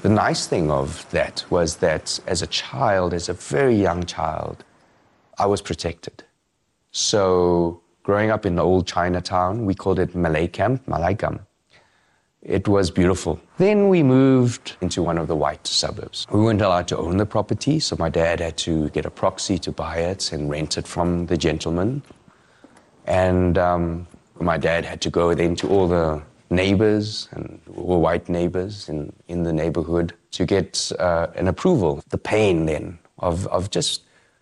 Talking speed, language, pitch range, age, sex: 170 wpm, English, 85-105 Hz, 30-49, male